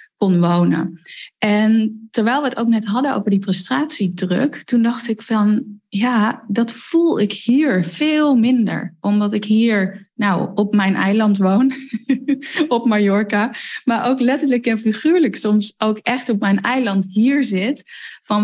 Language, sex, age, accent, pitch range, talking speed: Dutch, female, 10-29, Dutch, 185-230 Hz, 155 wpm